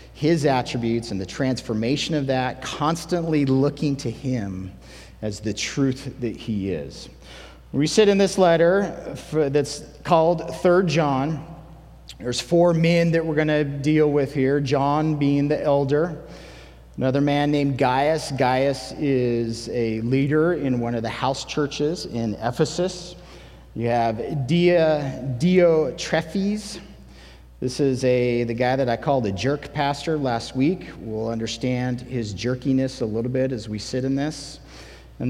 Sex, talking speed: male, 150 wpm